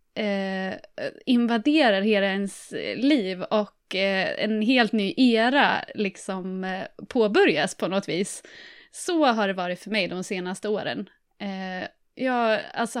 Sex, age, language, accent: female, 20-39, Swedish, native